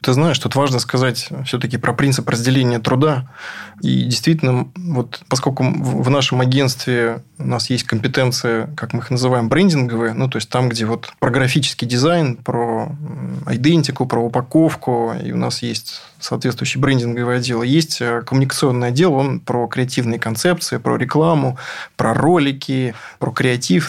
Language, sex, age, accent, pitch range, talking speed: Russian, male, 20-39, native, 125-150 Hz, 150 wpm